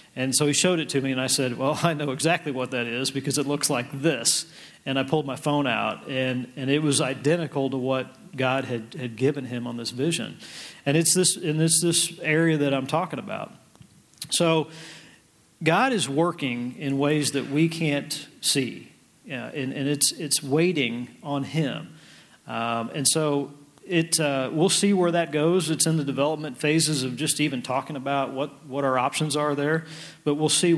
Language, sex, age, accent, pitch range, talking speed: English, male, 40-59, American, 135-160 Hz, 200 wpm